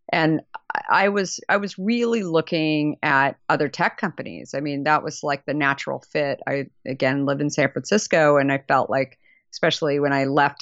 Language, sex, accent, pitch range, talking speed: English, female, American, 140-165 Hz, 185 wpm